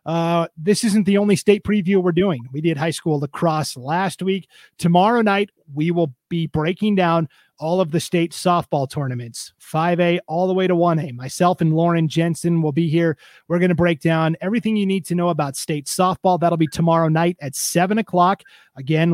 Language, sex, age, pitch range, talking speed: English, male, 30-49, 155-180 Hz, 205 wpm